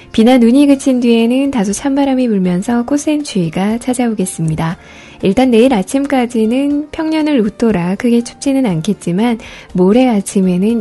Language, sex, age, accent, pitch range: Korean, female, 10-29, native, 185-250 Hz